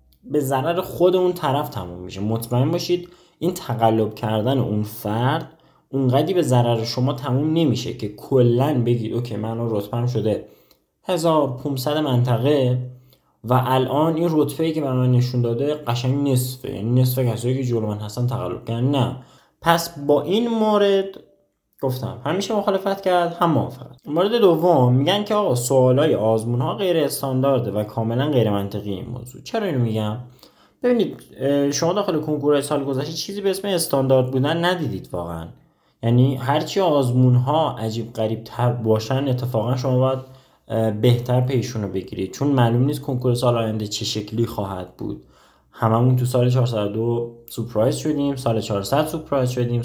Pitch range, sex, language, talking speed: 115-150 Hz, male, Persian, 155 wpm